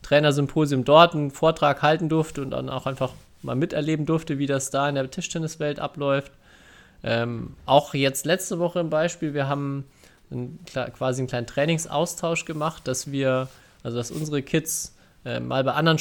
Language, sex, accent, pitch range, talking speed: German, male, German, 130-155 Hz, 165 wpm